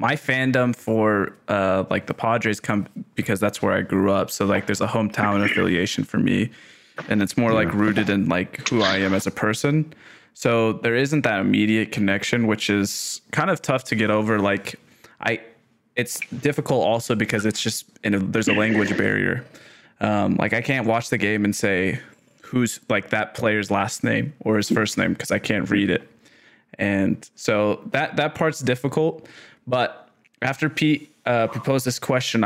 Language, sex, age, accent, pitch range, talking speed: English, male, 20-39, American, 105-125 Hz, 185 wpm